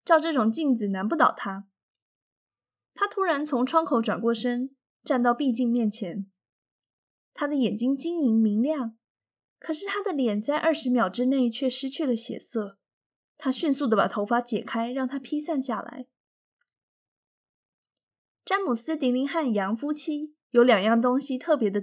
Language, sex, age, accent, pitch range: Chinese, female, 20-39, native, 220-285 Hz